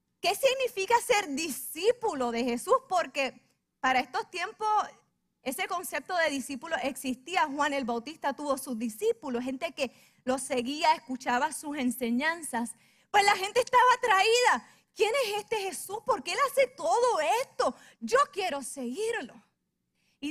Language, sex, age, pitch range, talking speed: Spanish, female, 30-49, 245-355 Hz, 140 wpm